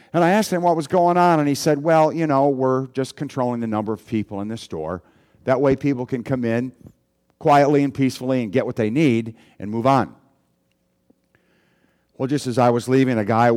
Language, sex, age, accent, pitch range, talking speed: English, male, 50-69, American, 110-145 Hz, 215 wpm